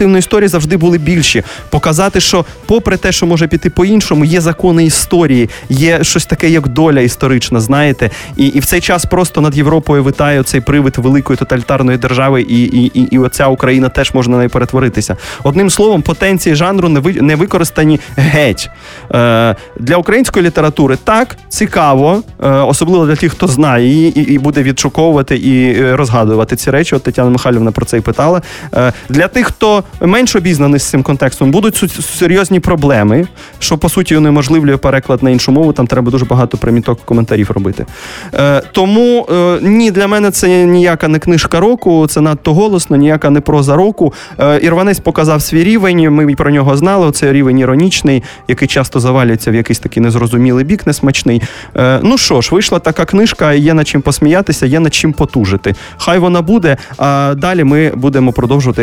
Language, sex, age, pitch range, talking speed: Russian, male, 20-39, 130-175 Hz, 175 wpm